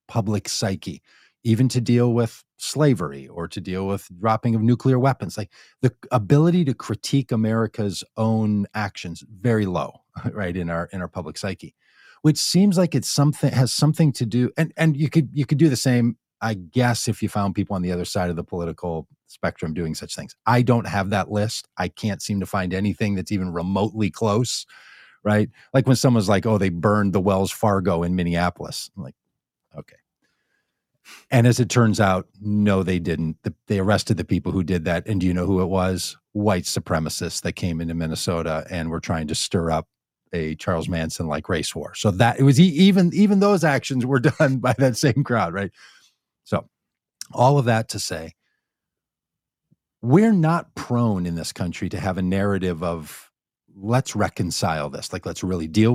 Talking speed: 190 wpm